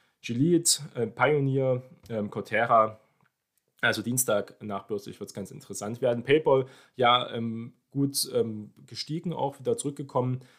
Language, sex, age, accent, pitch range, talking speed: German, male, 20-39, German, 110-130 Hz, 125 wpm